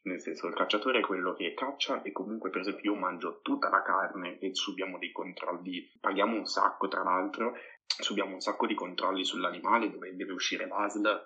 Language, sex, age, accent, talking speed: Italian, male, 20-39, native, 190 wpm